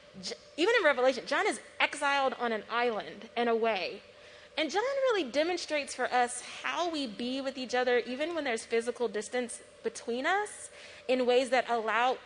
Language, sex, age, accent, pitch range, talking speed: English, female, 20-39, American, 230-285 Hz, 165 wpm